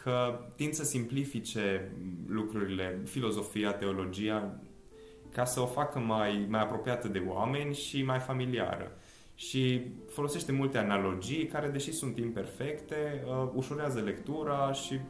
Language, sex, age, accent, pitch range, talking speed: Romanian, male, 20-39, native, 95-125 Hz, 125 wpm